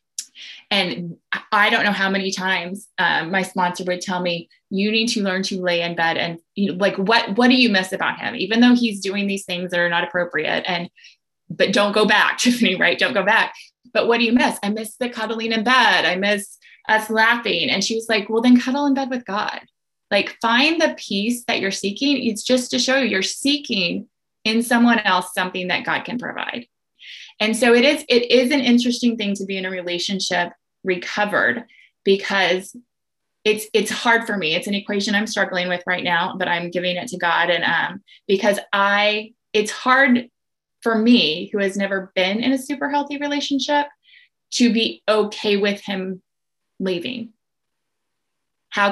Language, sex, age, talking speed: English, female, 20-39, 195 wpm